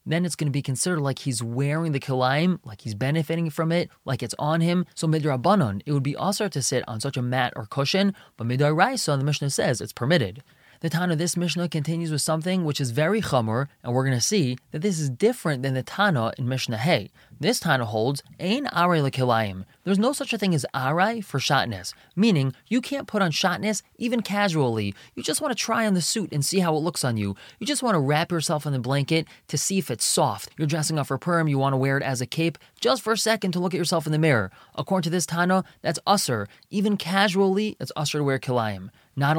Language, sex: English, male